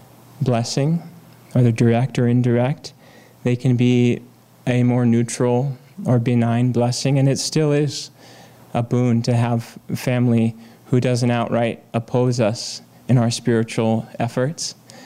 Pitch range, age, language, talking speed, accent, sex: 115-125 Hz, 20-39, English, 130 wpm, American, male